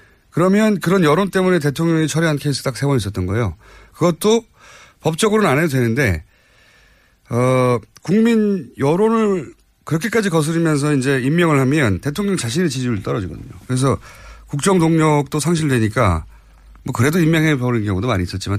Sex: male